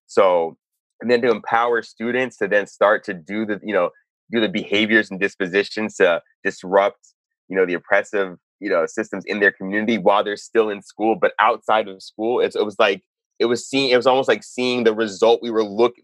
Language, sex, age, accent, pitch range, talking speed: English, male, 20-39, American, 100-130 Hz, 215 wpm